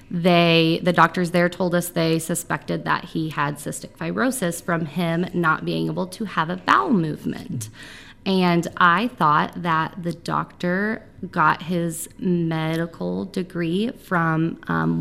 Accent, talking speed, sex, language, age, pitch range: American, 140 wpm, female, English, 20-39, 165-205 Hz